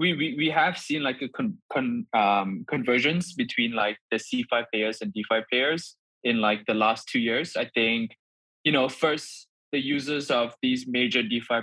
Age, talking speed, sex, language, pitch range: 20-39, 185 wpm, male, English, 115-155 Hz